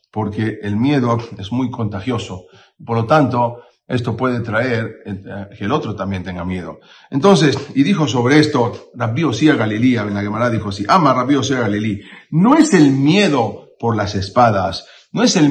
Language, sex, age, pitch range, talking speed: Spanish, male, 40-59, 110-150 Hz, 180 wpm